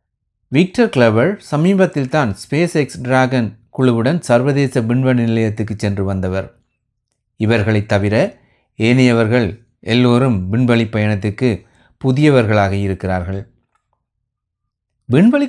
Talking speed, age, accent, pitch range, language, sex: 85 wpm, 30-49, native, 105-125 Hz, Tamil, male